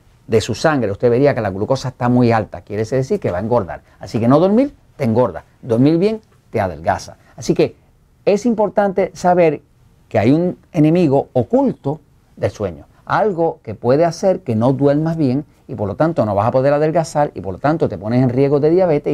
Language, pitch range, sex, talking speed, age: Spanish, 120-170 Hz, male, 210 wpm, 50-69